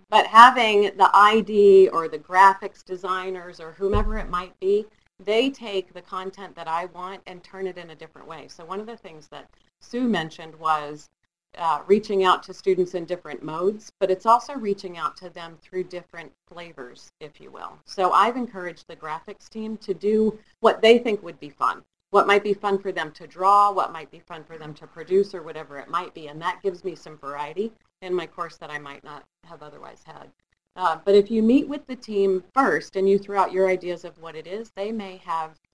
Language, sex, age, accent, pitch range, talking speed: English, female, 40-59, American, 160-200 Hz, 220 wpm